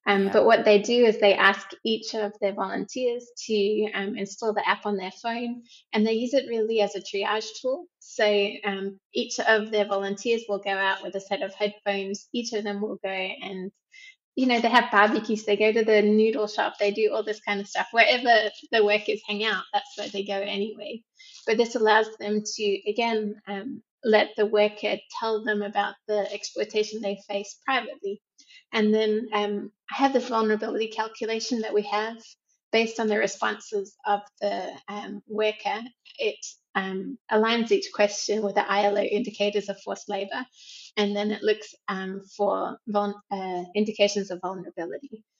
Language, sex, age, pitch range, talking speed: English, female, 20-39, 200-225 Hz, 180 wpm